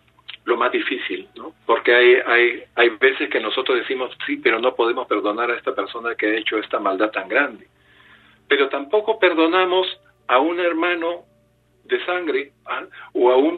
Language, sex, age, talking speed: Spanish, male, 50-69, 170 wpm